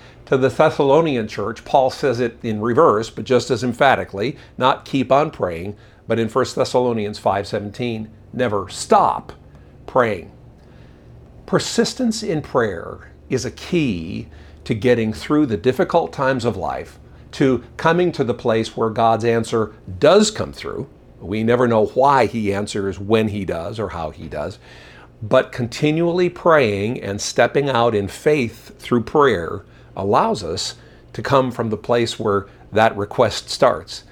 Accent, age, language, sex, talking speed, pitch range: American, 50-69, English, male, 145 wpm, 100-135 Hz